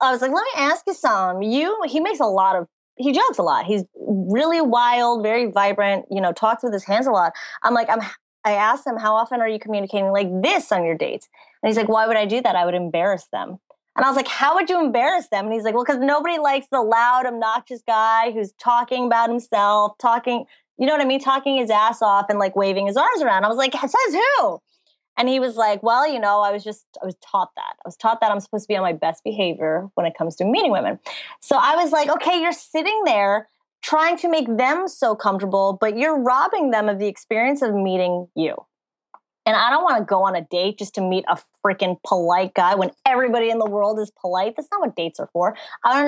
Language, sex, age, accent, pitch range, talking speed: English, female, 20-39, American, 195-260 Hz, 250 wpm